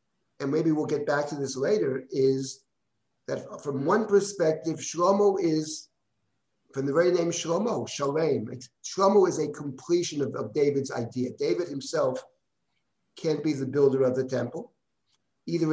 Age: 50-69